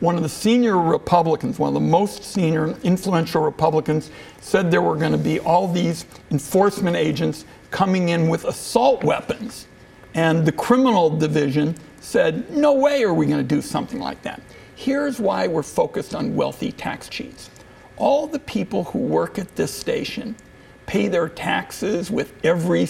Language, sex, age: English, male, 60-79